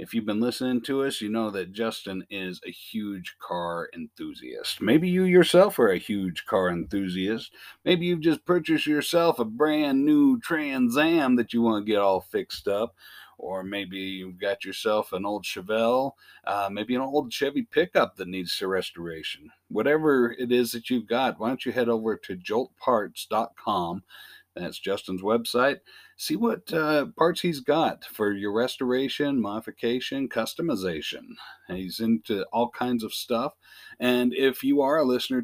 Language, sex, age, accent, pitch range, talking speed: English, male, 50-69, American, 105-155 Hz, 165 wpm